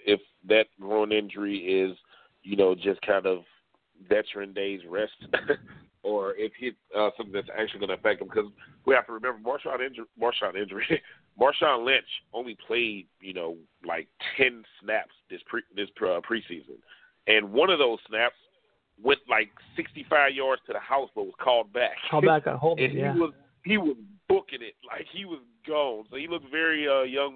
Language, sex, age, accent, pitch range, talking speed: English, male, 30-49, American, 105-165 Hz, 185 wpm